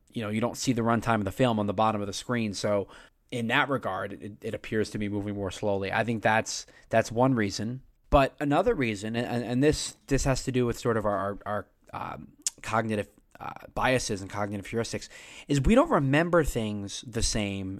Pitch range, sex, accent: 105-140 Hz, male, American